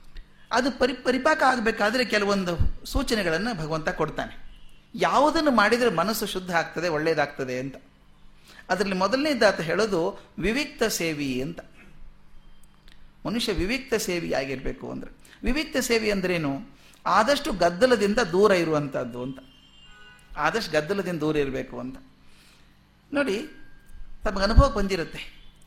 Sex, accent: male, native